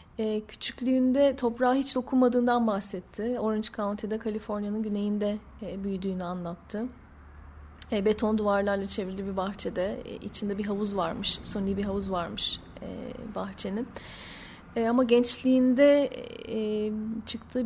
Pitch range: 200-235 Hz